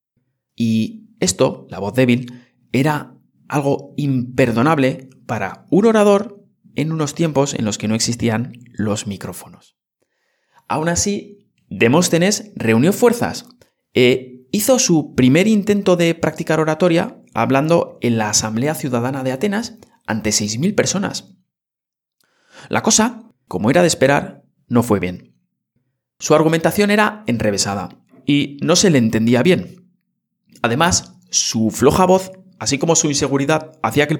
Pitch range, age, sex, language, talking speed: 120-180 Hz, 30-49, male, Spanish, 130 wpm